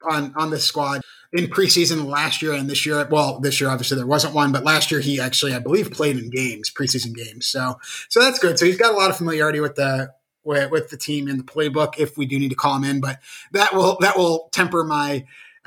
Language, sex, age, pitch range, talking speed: English, male, 30-49, 135-165 Hz, 250 wpm